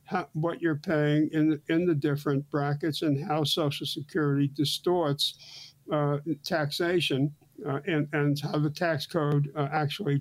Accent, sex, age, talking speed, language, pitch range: American, male, 60-79, 145 wpm, English, 145-175 Hz